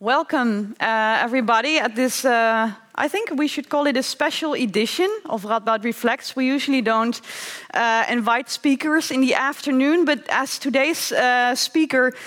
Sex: female